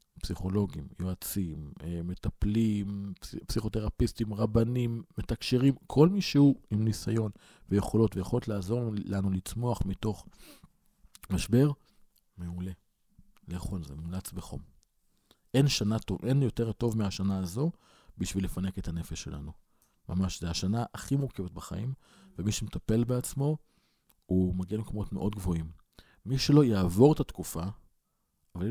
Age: 40-59